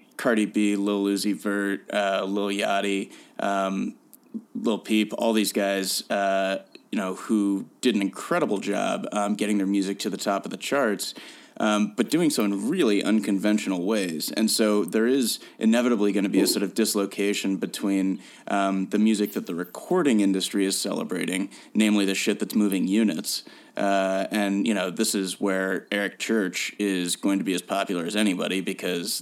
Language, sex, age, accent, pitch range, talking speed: English, male, 30-49, American, 95-110 Hz, 175 wpm